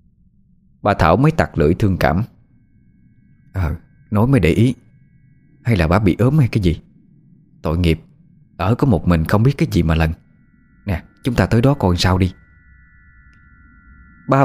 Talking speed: 175 wpm